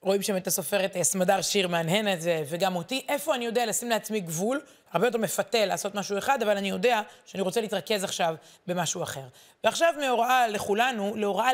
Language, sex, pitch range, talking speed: Hebrew, female, 190-245 Hz, 180 wpm